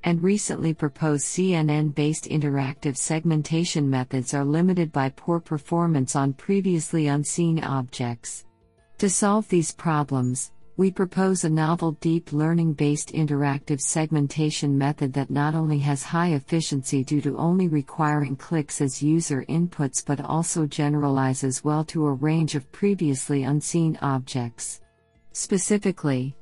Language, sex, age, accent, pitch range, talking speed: English, female, 50-69, American, 135-160 Hz, 125 wpm